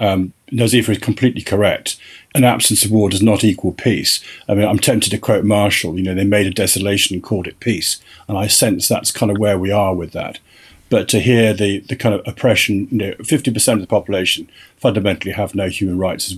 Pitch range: 95-115 Hz